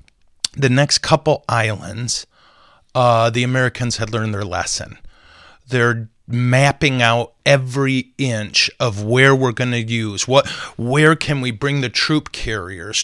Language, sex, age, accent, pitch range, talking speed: English, male, 30-49, American, 110-135 Hz, 140 wpm